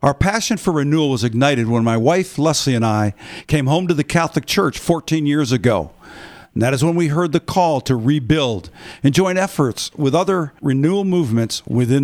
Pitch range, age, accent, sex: 130-165 Hz, 50-69, American, male